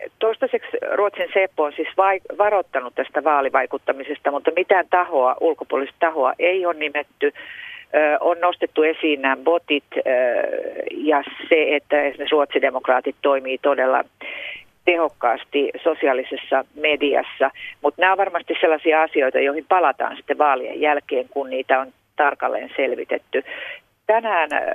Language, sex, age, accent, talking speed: Finnish, female, 40-59, native, 125 wpm